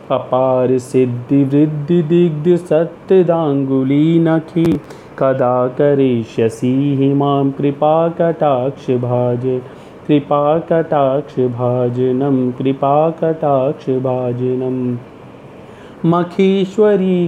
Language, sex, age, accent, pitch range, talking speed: Hindi, male, 30-49, native, 130-180 Hz, 45 wpm